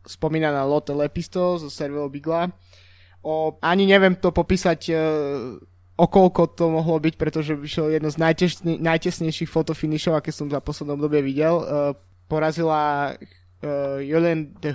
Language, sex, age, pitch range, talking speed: Slovak, male, 20-39, 140-165 Hz, 140 wpm